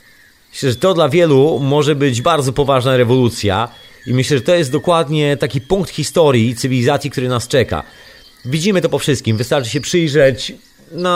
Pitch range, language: 115-160 Hz, Polish